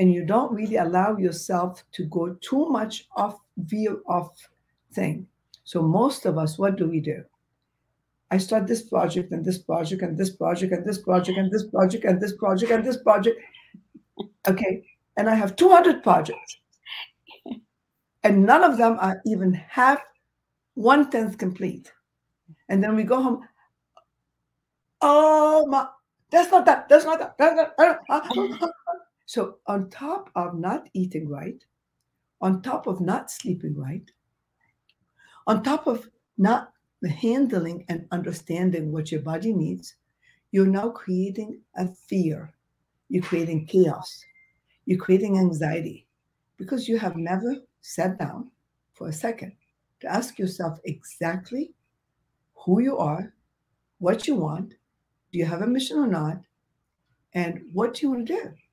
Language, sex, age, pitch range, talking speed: English, female, 60-79, 180-250 Hz, 155 wpm